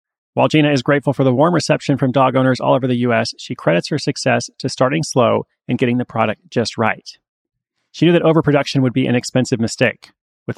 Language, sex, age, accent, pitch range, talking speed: English, male, 30-49, American, 115-145 Hz, 215 wpm